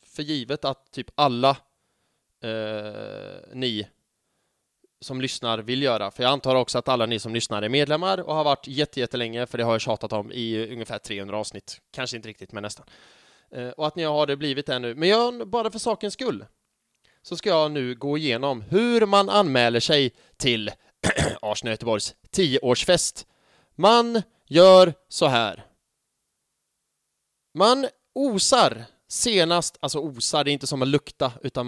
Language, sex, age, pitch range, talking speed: English, male, 20-39, 125-195 Hz, 165 wpm